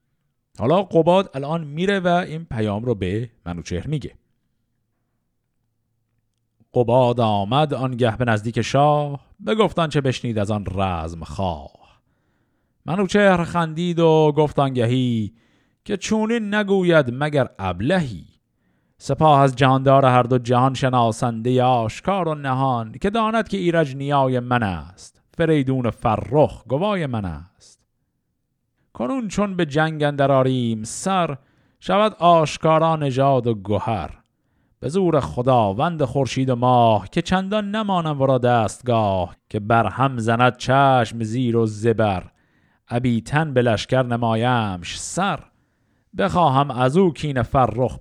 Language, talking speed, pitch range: Persian, 120 wpm, 115-155 Hz